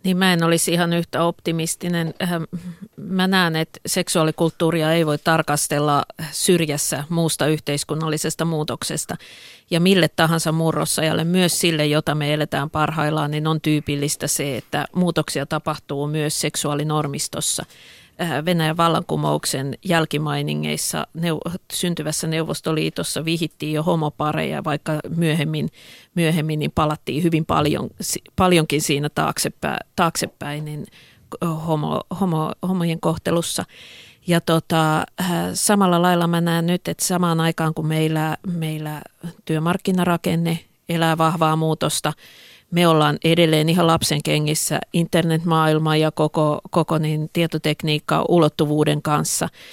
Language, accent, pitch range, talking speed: Finnish, native, 150-170 Hz, 110 wpm